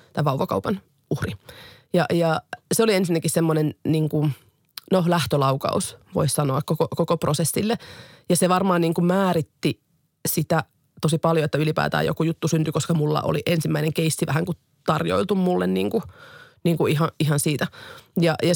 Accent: native